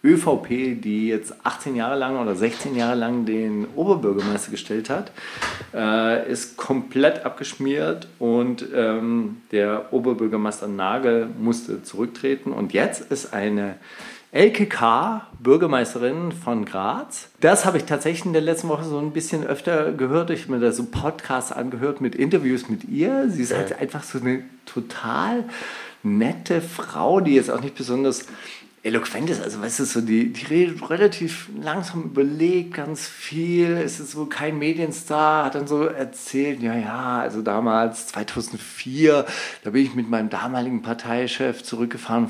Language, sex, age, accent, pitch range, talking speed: German, male, 40-59, German, 115-155 Hz, 150 wpm